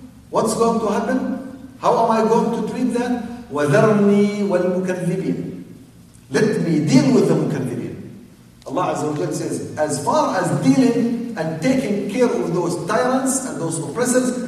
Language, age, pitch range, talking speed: English, 50-69, 175-230 Hz, 150 wpm